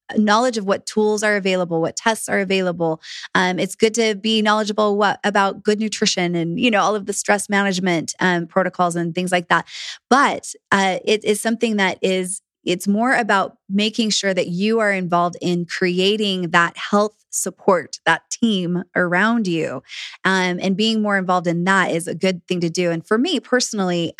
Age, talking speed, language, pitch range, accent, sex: 20-39, 190 wpm, English, 175-210 Hz, American, female